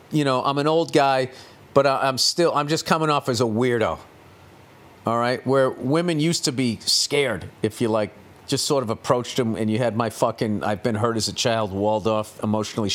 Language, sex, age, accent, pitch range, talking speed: English, male, 40-59, American, 110-140 Hz, 215 wpm